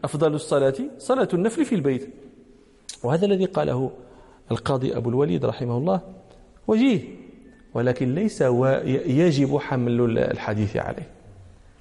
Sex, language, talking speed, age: male, Danish, 105 wpm, 40-59